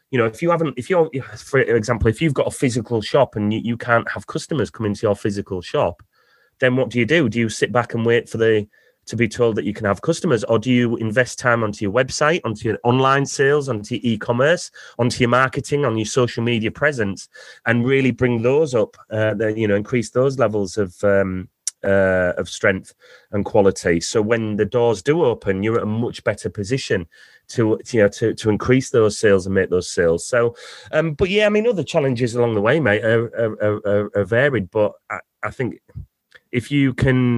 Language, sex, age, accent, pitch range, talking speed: English, male, 30-49, British, 105-125 Hz, 215 wpm